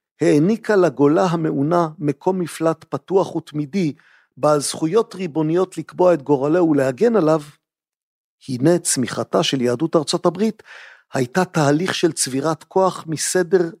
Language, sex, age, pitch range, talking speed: Hebrew, male, 50-69, 145-180 Hz, 115 wpm